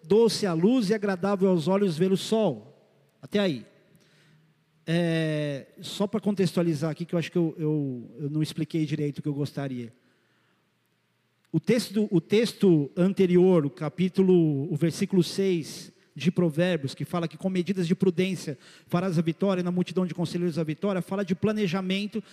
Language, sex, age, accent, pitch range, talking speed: Portuguese, male, 50-69, Brazilian, 170-215 Hz, 160 wpm